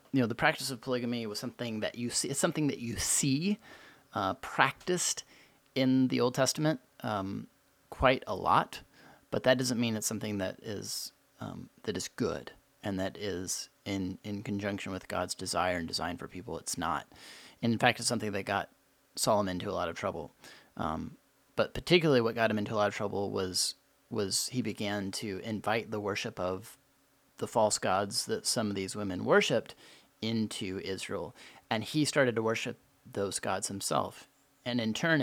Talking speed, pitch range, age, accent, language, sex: 185 wpm, 105-140 Hz, 30-49, American, English, male